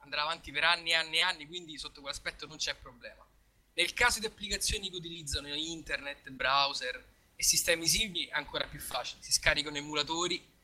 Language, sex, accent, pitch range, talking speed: Italian, male, native, 145-190 Hz, 180 wpm